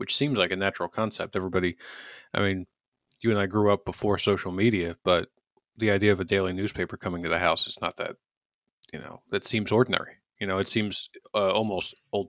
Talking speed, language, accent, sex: 210 wpm, English, American, male